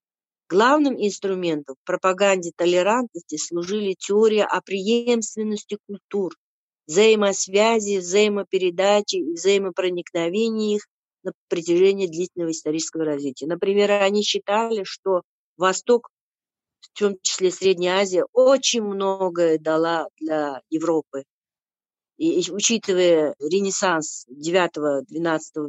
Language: Russian